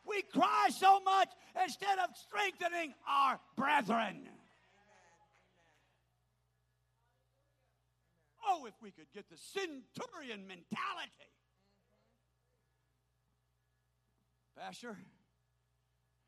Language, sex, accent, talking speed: English, male, American, 65 wpm